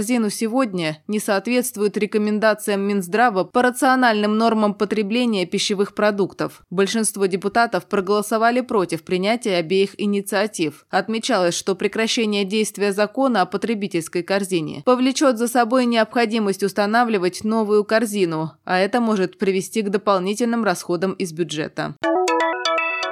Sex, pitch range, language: female, 190-230 Hz, Russian